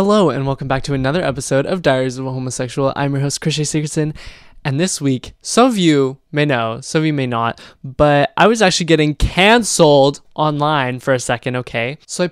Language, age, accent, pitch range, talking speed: English, 20-39, American, 130-155 Hz, 210 wpm